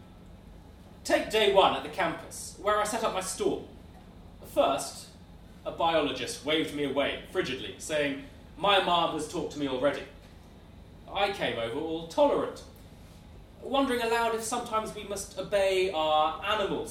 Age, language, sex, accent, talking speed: 30-49, English, male, British, 145 wpm